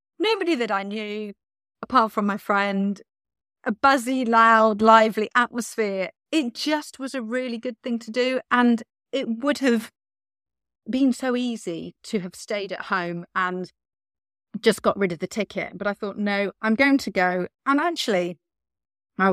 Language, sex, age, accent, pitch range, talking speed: English, female, 40-59, British, 185-250 Hz, 160 wpm